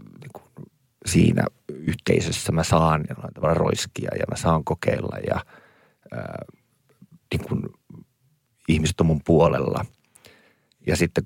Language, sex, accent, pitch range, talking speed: Finnish, male, native, 80-85 Hz, 105 wpm